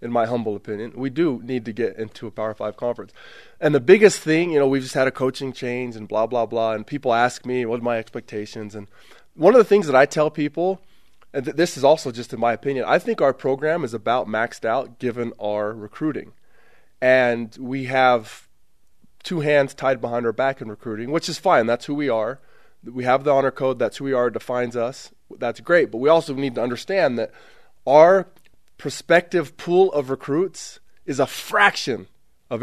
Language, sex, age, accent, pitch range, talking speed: English, male, 20-39, American, 120-155 Hz, 210 wpm